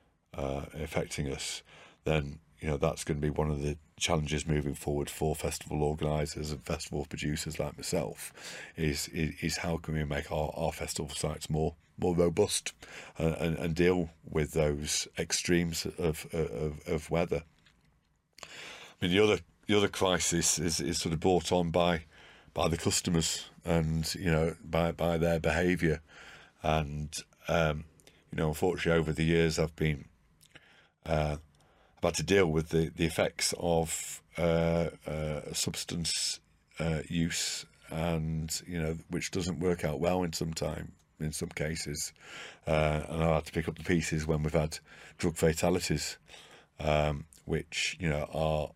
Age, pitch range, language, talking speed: 40-59, 75-85 Hz, English, 160 wpm